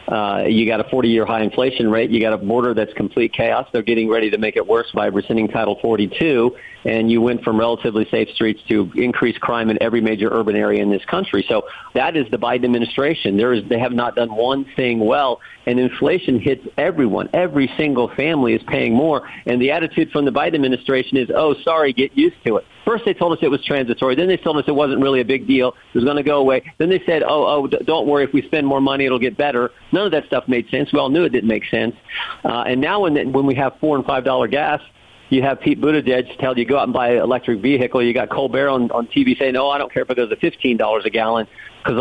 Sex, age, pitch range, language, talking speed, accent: male, 50-69, 110-135 Hz, English, 255 wpm, American